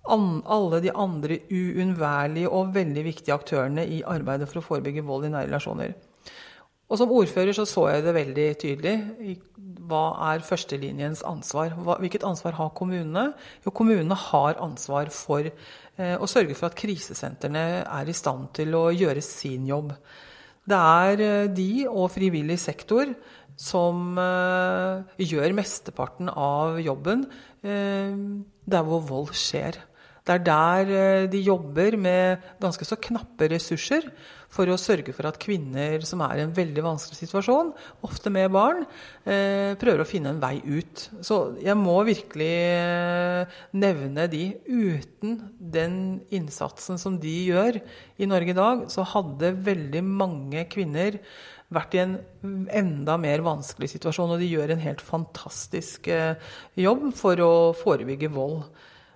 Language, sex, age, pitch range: English, female, 40-59, 155-195 Hz